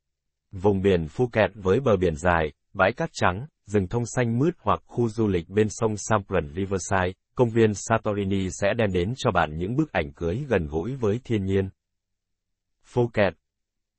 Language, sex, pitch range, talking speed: Vietnamese, male, 85-110 Hz, 170 wpm